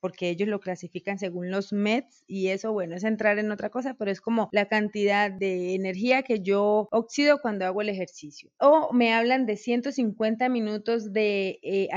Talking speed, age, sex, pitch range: 185 wpm, 30-49, female, 190-235 Hz